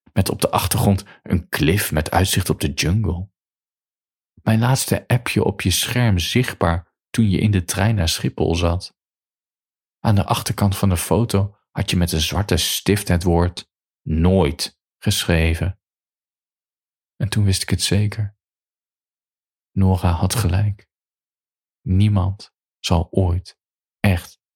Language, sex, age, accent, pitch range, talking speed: Dutch, male, 40-59, Dutch, 90-105 Hz, 135 wpm